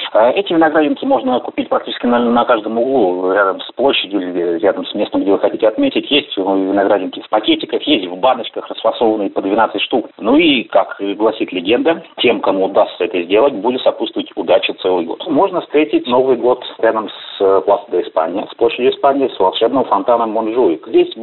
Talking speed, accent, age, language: 180 wpm, native, 30-49, Russian